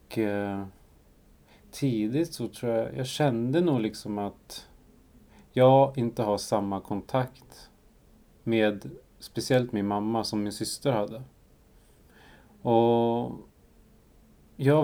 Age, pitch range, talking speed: 30-49, 100-120 Hz, 100 wpm